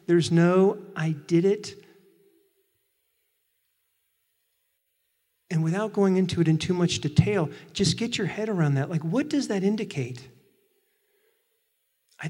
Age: 50-69